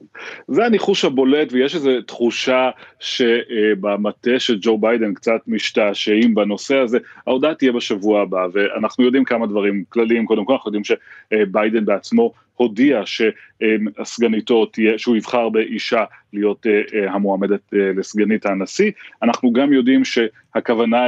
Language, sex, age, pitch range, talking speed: Hebrew, male, 30-49, 105-130 Hz, 120 wpm